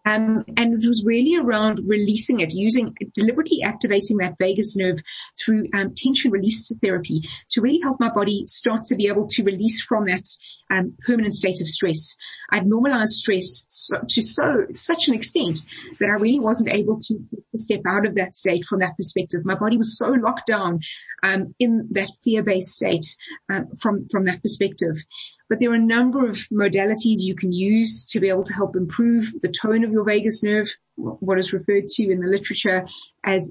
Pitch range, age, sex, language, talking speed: 190-235 Hz, 30-49, female, English, 190 wpm